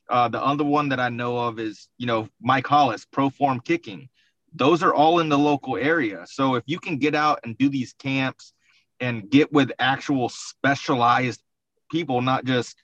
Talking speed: 190 wpm